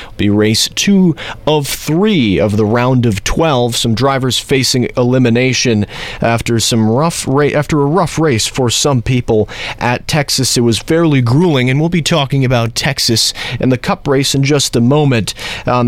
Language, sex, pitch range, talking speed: English, male, 115-145 Hz, 165 wpm